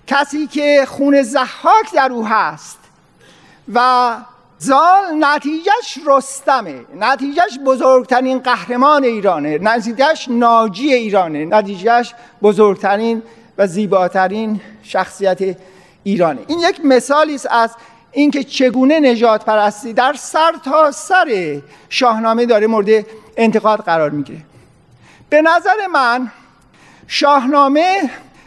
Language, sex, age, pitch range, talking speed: Persian, male, 50-69, 220-290 Hz, 100 wpm